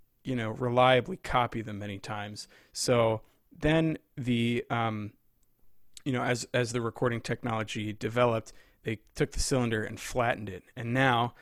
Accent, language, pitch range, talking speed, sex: American, English, 110-125 Hz, 145 wpm, male